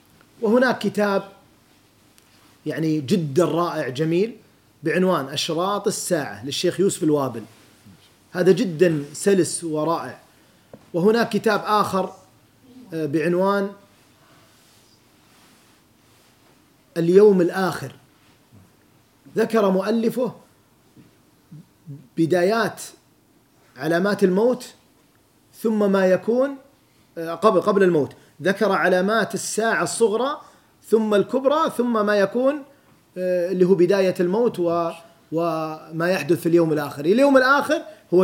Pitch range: 140-195 Hz